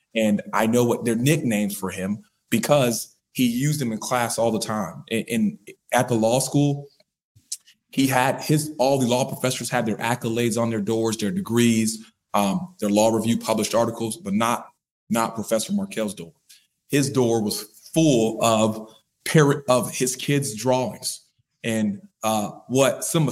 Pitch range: 115-140 Hz